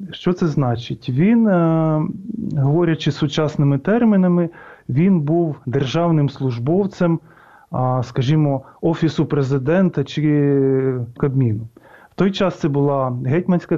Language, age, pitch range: Ukrainian, 30-49, 135-165 Hz